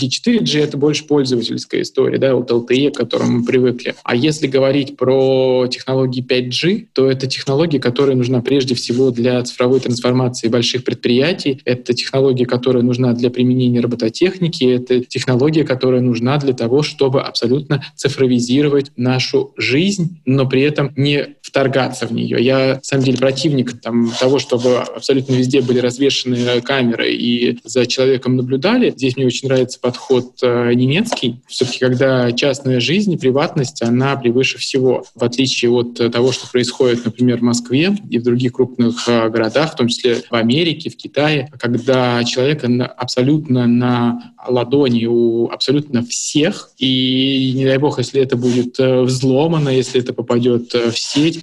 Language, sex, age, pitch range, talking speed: Russian, male, 20-39, 120-140 Hz, 155 wpm